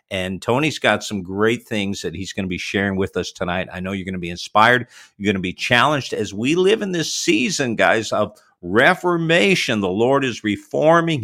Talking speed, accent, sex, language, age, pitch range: 215 wpm, American, male, English, 50-69, 95-120 Hz